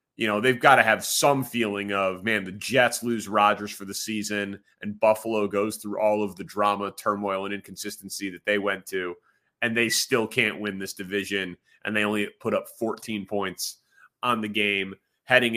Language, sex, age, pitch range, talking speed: English, male, 30-49, 100-120 Hz, 195 wpm